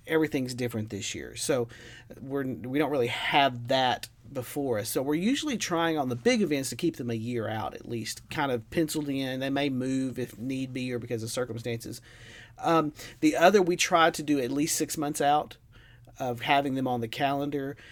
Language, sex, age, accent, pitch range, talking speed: English, male, 40-59, American, 120-145 Hz, 205 wpm